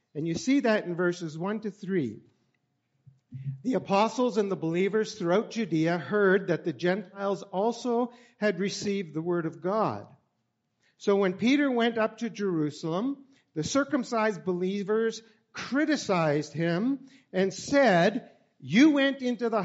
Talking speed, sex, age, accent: 135 wpm, male, 50-69, American